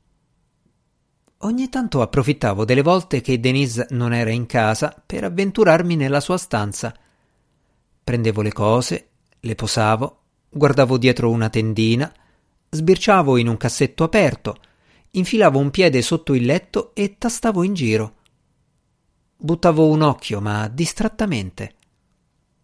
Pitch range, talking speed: 115-155 Hz, 120 wpm